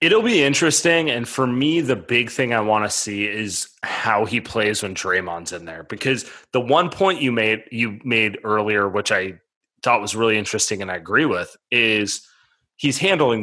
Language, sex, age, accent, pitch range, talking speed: English, male, 30-49, American, 105-130 Hz, 190 wpm